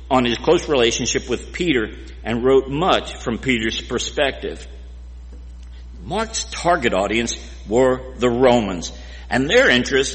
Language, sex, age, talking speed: English, male, 60-79, 125 wpm